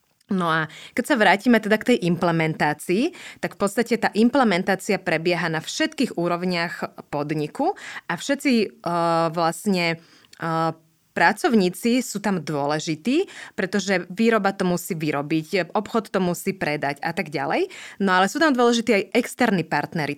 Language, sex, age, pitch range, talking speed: Slovak, female, 20-39, 170-215 Hz, 145 wpm